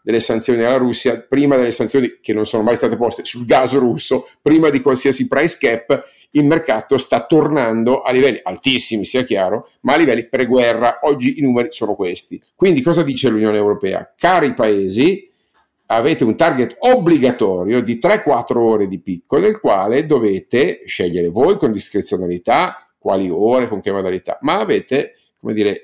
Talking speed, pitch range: 165 wpm, 115-165 Hz